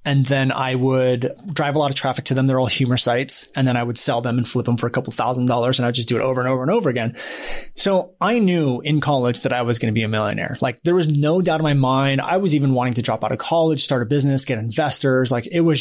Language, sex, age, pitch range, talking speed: English, male, 30-49, 125-155 Hz, 295 wpm